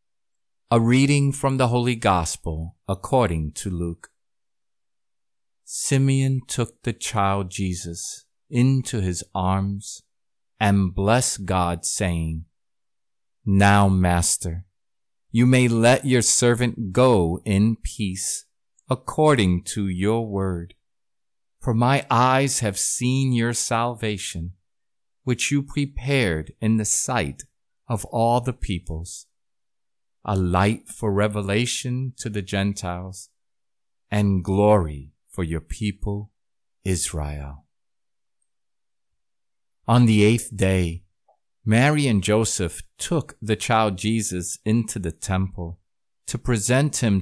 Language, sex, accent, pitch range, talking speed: English, male, American, 90-120 Hz, 105 wpm